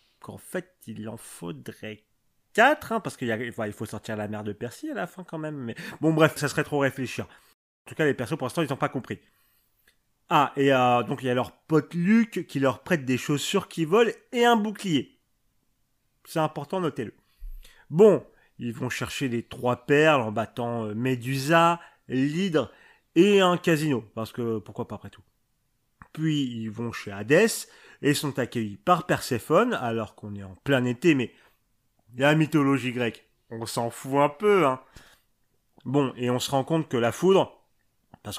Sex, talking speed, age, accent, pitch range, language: male, 190 wpm, 30-49, French, 115-165 Hz, French